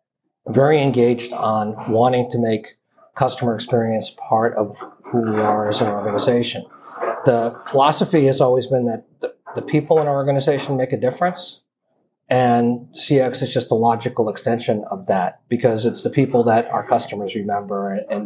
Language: English